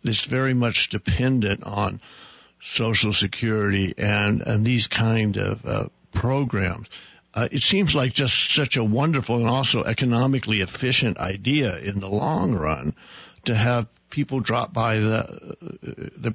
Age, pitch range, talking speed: 60-79, 105-120 Hz, 145 wpm